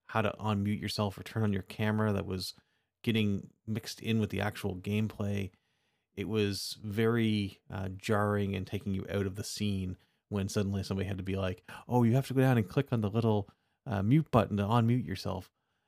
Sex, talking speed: male, 205 wpm